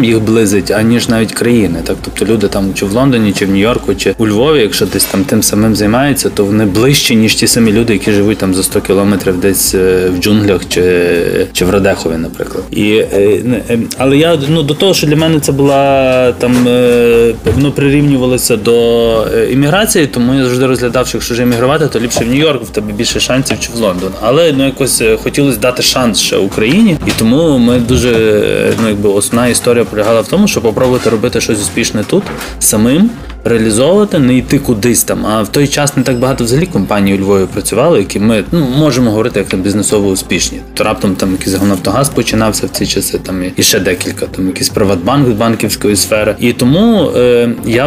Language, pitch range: Ukrainian, 100-130 Hz